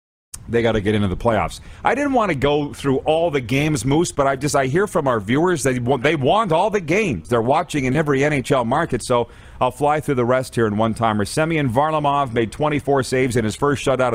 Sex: male